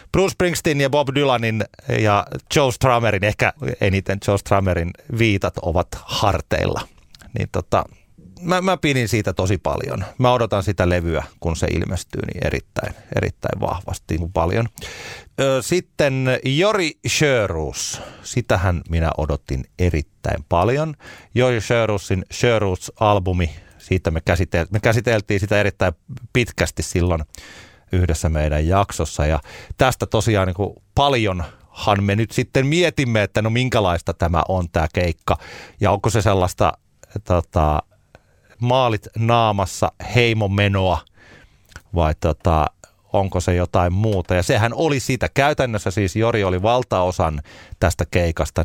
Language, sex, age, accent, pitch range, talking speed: Finnish, male, 30-49, native, 90-120 Hz, 120 wpm